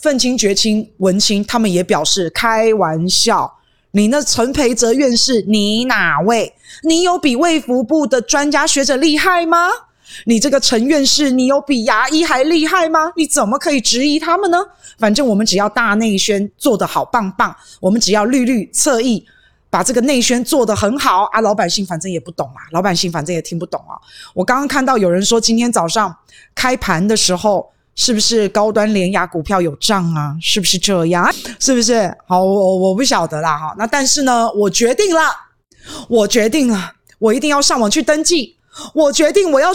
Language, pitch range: Chinese, 200-275 Hz